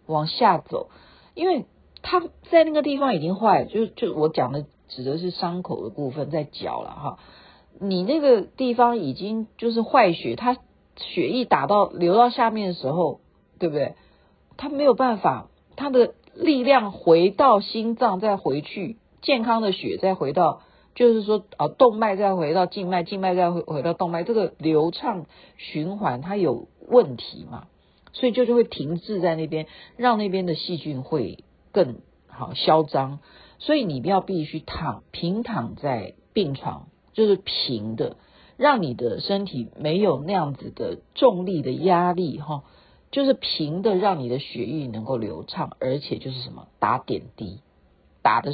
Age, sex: 50-69, female